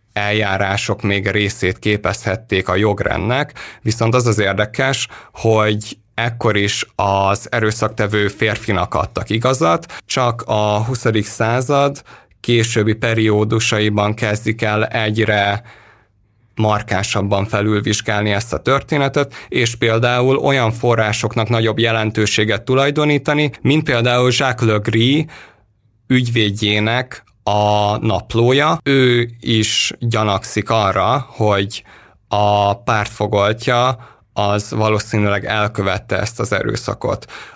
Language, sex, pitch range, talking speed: Hungarian, male, 105-115 Hz, 95 wpm